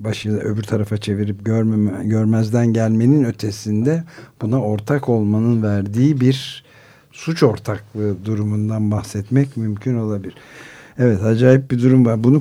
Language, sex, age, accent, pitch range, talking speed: Turkish, male, 60-79, native, 95-125 Hz, 120 wpm